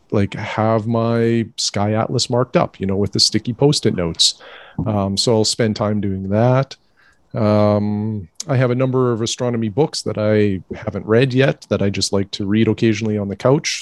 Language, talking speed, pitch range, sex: English, 190 wpm, 105-120 Hz, male